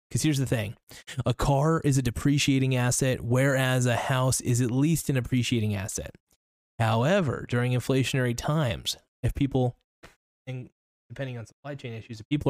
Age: 20-39